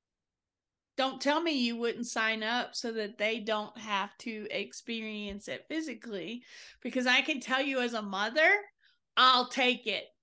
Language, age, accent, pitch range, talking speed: English, 40-59, American, 240-285 Hz, 160 wpm